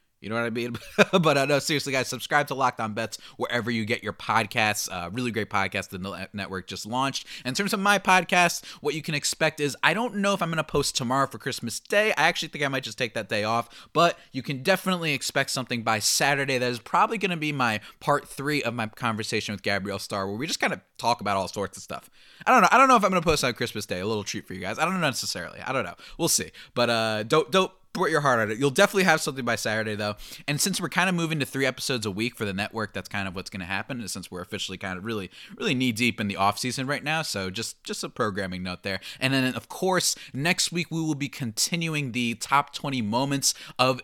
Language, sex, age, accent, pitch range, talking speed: English, male, 20-39, American, 105-150 Hz, 270 wpm